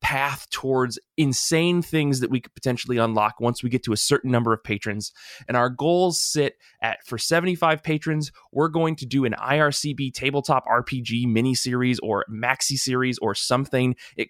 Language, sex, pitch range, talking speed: English, male, 120-155 Hz, 175 wpm